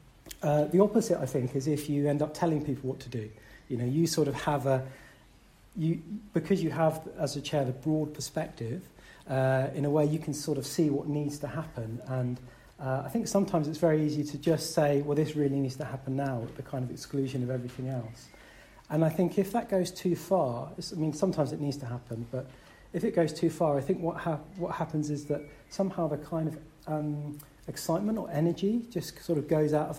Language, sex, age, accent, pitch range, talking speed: English, male, 40-59, British, 135-160 Hz, 230 wpm